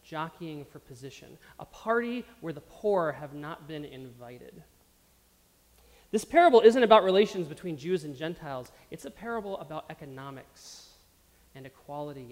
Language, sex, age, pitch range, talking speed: English, male, 30-49, 140-195 Hz, 135 wpm